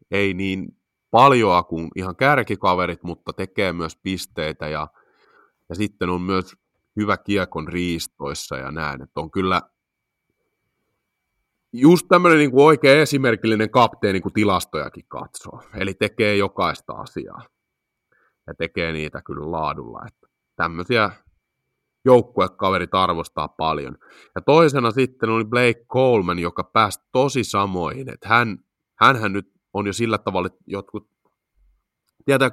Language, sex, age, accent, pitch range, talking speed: Finnish, male, 30-49, native, 85-105 Hz, 125 wpm